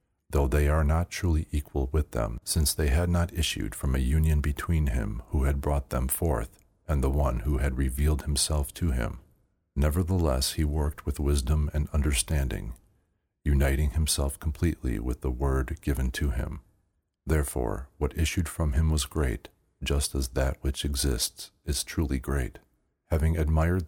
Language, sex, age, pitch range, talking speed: English, male, 40-59, 70-80 Hz, 165 wpm